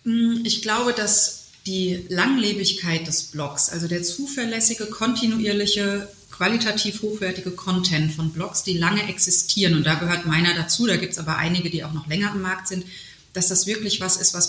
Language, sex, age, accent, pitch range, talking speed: German, female, 30-49, German, 165-205 Hz, 175 wpm